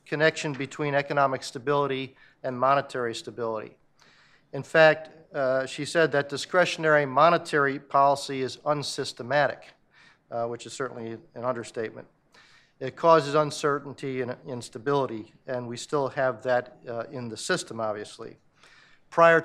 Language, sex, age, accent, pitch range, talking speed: English, male, 50-69, American, 130-155 Hz, 125 wpm